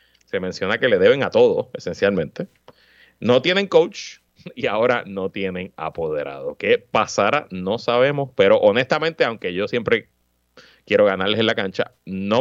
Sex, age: male, 30-49